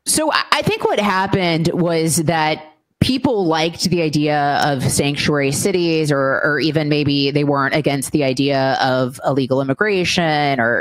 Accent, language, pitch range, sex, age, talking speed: American, English, 145-180 Hz, female, 30-49, 150 wpm